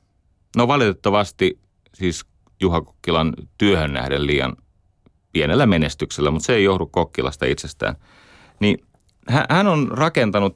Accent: native